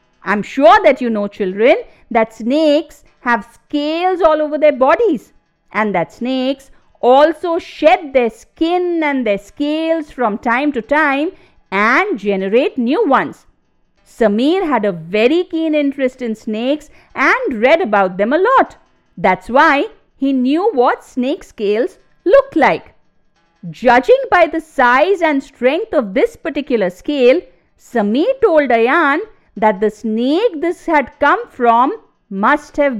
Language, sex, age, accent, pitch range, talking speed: English, female, 50-69, Indian, 230-330 Hz, 140 wpm